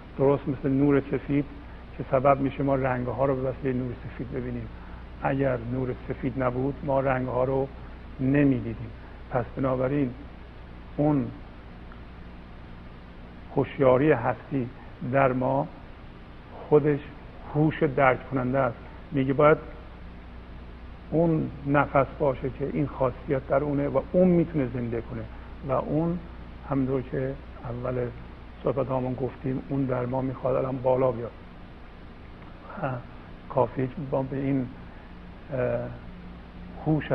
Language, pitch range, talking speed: Persian, 85-135 Hz, 120 wpm